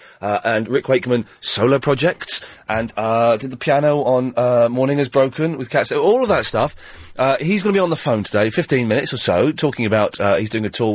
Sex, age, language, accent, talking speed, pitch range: male, 30-49, English, British, 235 wpm, 125-200 Hz